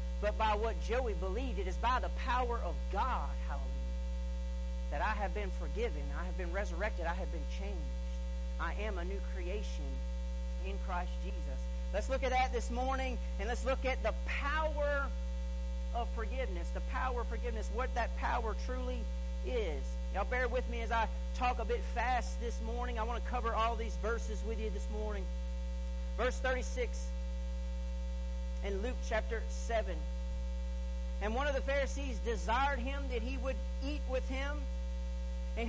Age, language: 40-59, English